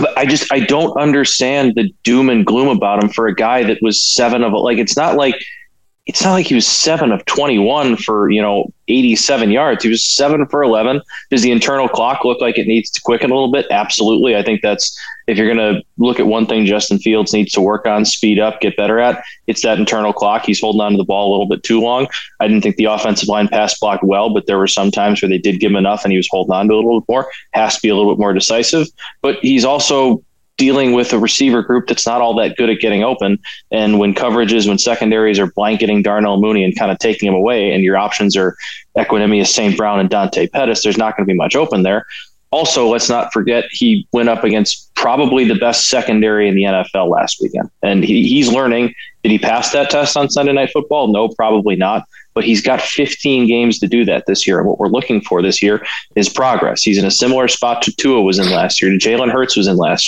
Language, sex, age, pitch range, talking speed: English, male, 20-39, 105-125 Hz, 245 wpm